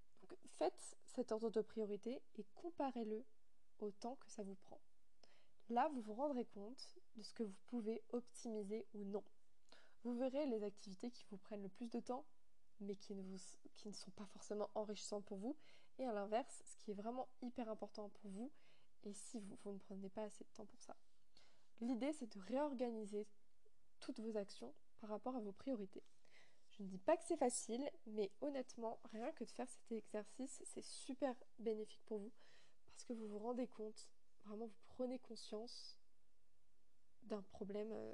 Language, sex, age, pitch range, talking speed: French, female, 20-39, 210-245 Hz, 180 wpm